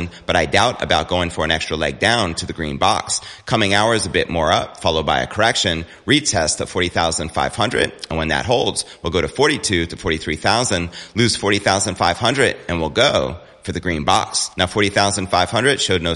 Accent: American